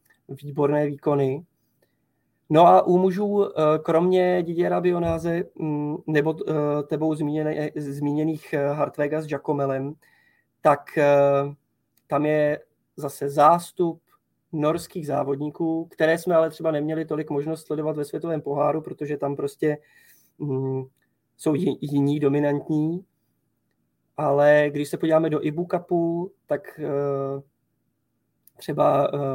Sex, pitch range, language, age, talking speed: male, 140-160 Hz, Czech, 20-39, 100 wpm